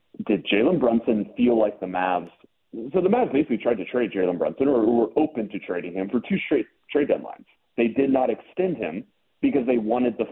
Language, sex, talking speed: English, male, 215 wpm